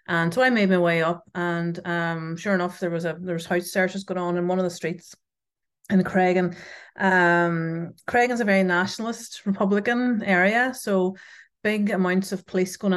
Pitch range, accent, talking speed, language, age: 170-200 Hz, Irish, 185 wpm, English, 30-49